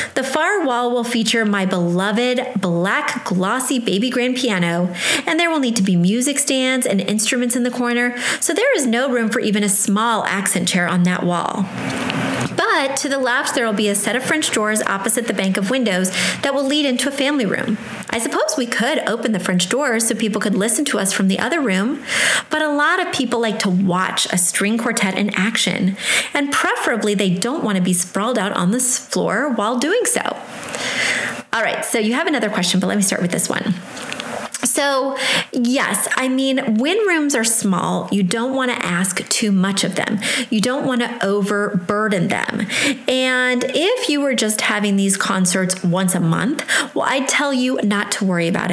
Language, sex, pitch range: English, female, 200-260 Hz